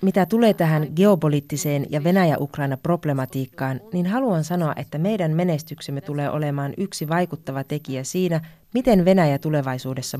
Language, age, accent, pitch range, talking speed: Finnish, 30-49, native, 140-180 Hz, 125 wpm